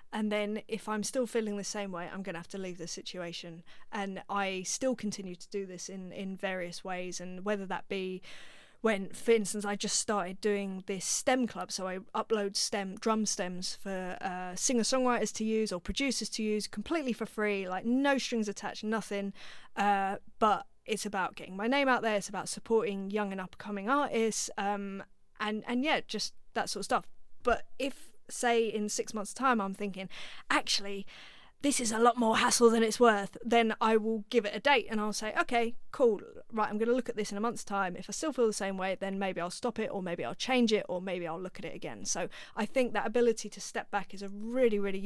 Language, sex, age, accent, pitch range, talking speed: English, female, 20-39, British, 195-230 Hz, 225 wpm